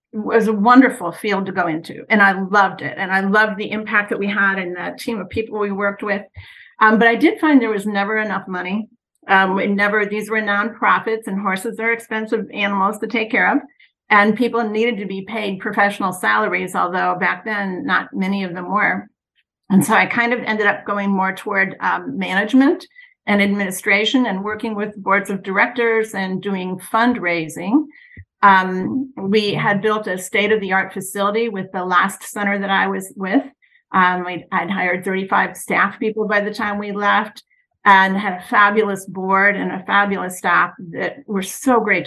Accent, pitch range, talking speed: American, 195-225 Hz, 185 wpm